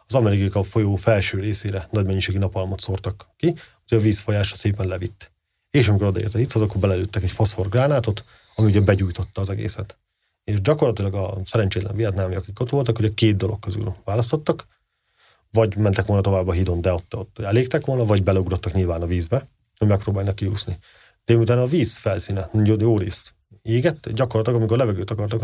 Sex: male